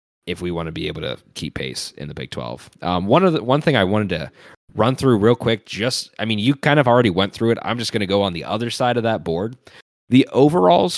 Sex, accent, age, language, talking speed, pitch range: male, American, 20-39, English, 275 wpm, 95-135 Hz